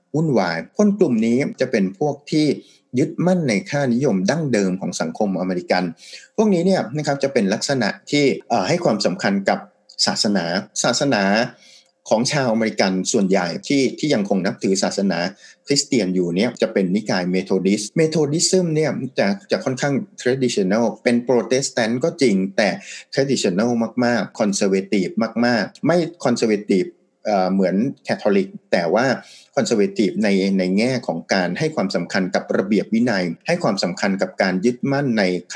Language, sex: Thai, male